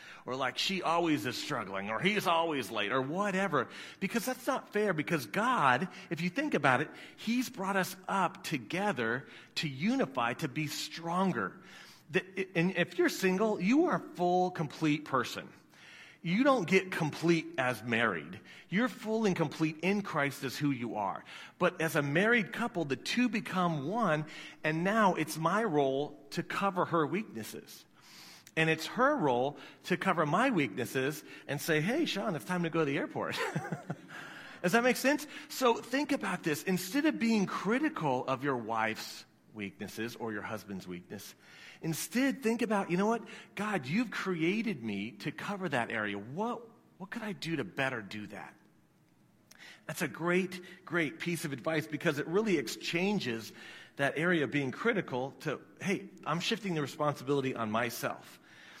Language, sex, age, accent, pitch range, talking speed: English, male, 40-59, American, 140-200 Hz, 165 wpm